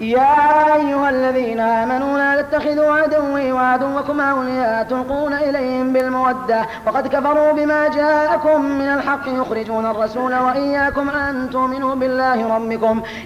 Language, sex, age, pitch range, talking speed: Arabic, female, 30-49, 255-295 Hz, 115 wpm